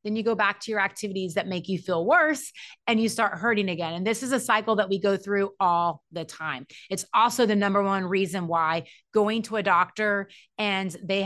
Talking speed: 225 wpm